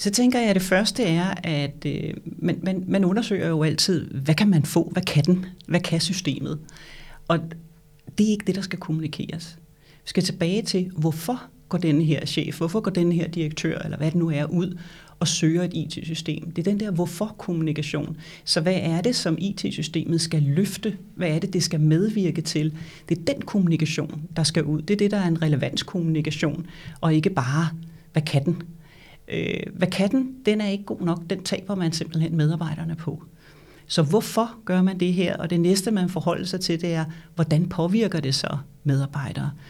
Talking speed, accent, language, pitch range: 195 wpm, native, Danish, 155-185 Hz